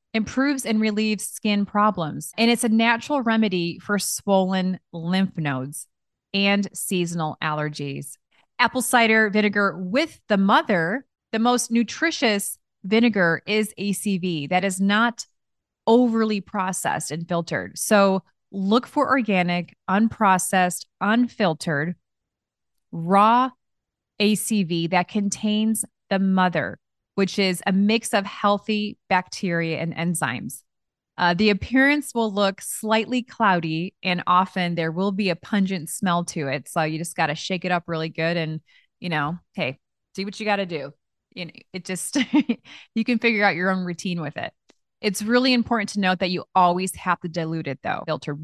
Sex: female